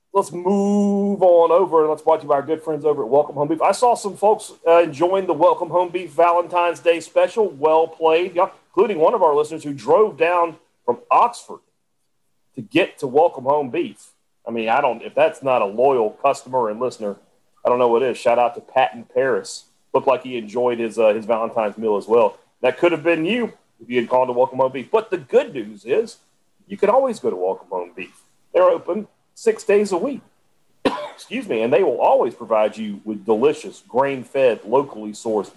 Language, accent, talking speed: English, American, 210 wpm